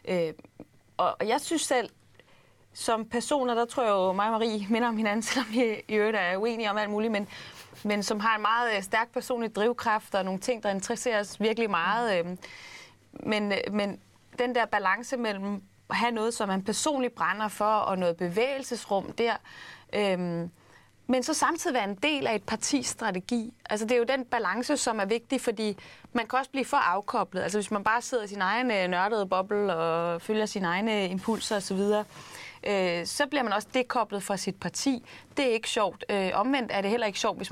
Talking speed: 200 wpm